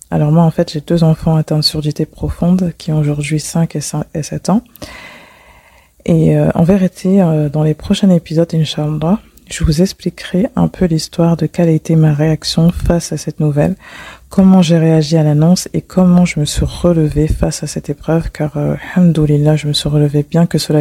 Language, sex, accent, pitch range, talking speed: French, female, French, 150-175 Hz, 205 wpm